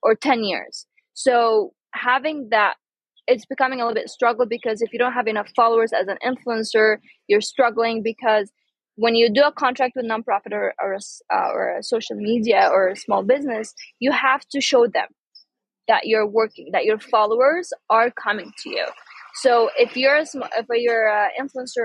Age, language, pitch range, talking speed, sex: 20-39, English, 220-265 Hz, 185 wpm, female